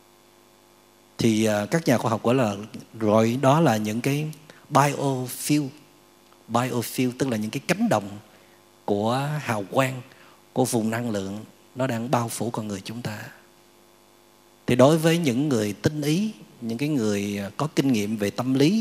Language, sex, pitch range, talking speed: Vietnamese, male, 105-135 Hz, 165 wpm